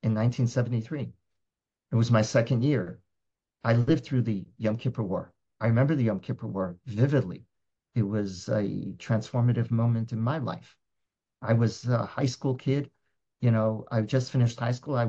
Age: 50-69